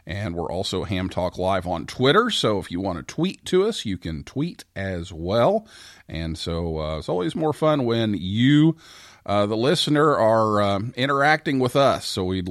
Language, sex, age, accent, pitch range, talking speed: English, male, 40-59, American, 85-120 Hz, 190 wpm